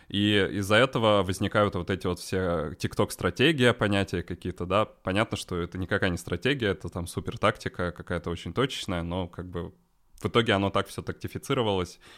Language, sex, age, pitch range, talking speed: Russian, male, 20-39, 90-105 Hz, 170 wpm